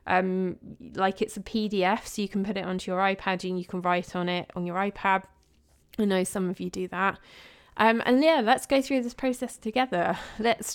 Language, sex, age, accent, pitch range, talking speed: English, female, 20-39, British, 185-225 Hz, 220 wpm